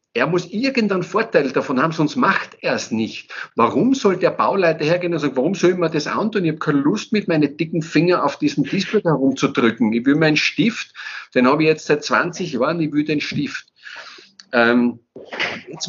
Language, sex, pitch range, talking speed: German, male, 120-165 Hz, 195 wpm